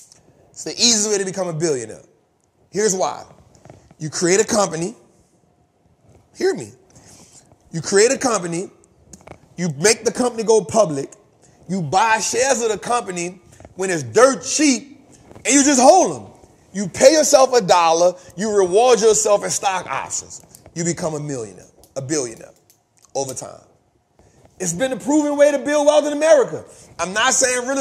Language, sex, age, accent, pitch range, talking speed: English, male, 30-49, American, 165-250 Hz, 160 wpm